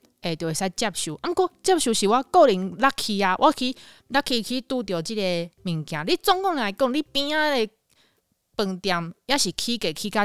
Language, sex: Chinese, female